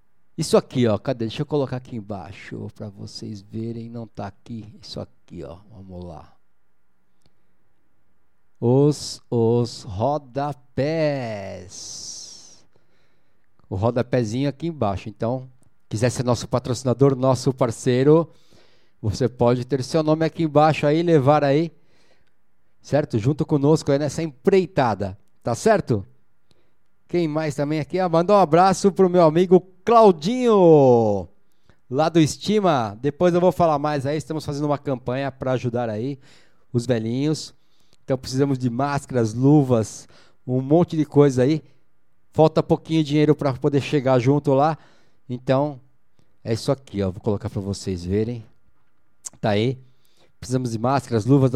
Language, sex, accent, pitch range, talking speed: Portuguese, male, Brazilian, 115-150 Hz, 135 wpm